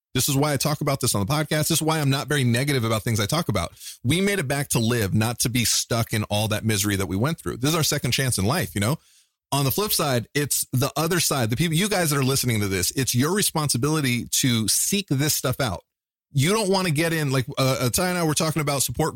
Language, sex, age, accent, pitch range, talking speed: English, male, 30-49, American, 120-160 Hz, 280 wpm